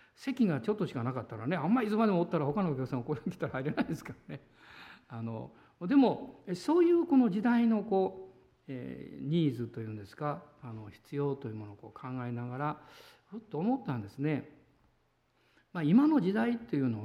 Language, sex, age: Japanese, male, 60-79